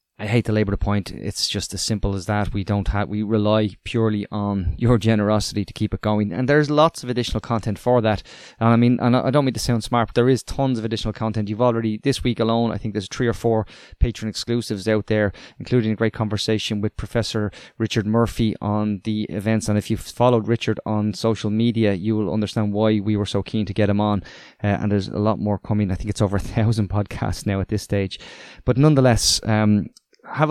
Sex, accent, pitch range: male, Irish, 100-115 Hz